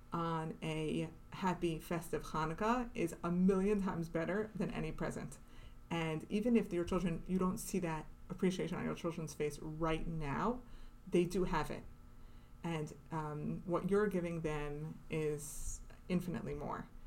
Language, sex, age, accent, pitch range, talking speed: English, female, 30-49, American, 160-195 Hz, 150 wpm